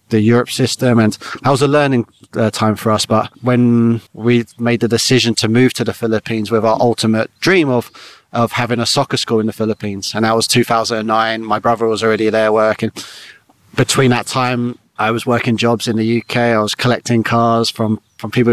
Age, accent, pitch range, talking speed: 30-49, British, 110-120 Hz, 205 wpm